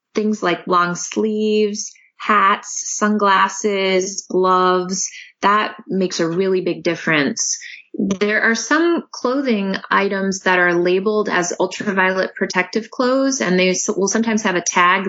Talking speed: 125 wpm